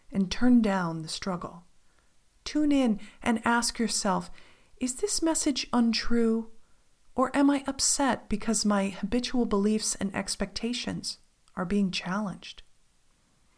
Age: 40-59